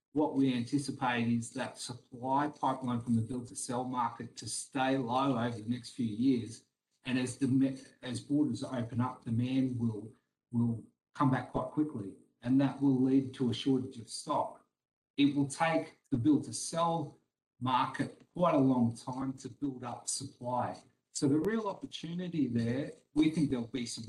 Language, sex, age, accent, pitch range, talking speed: English, male, 40-59, Australian, 115-140 Hz, 175 wpm